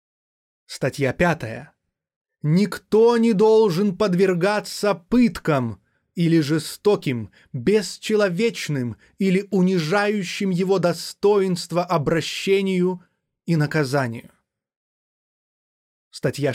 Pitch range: 145-195 Hz